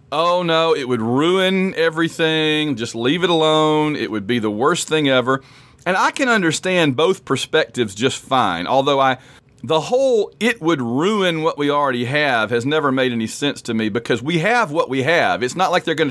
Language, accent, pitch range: English, American, 130-180 Hz